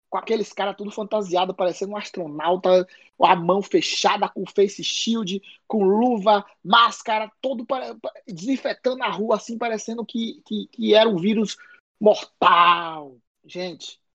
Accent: Brazilian